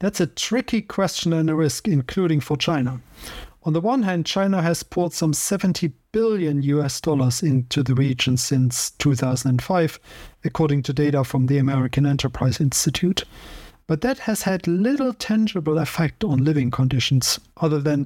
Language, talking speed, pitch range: English, 155 wpm, 140-175 Hz